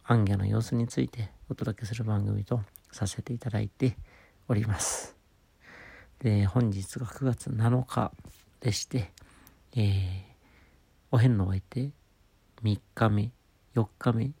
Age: 50-69